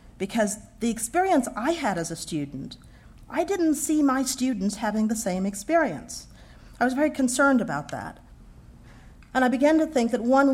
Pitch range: 175-230 Hz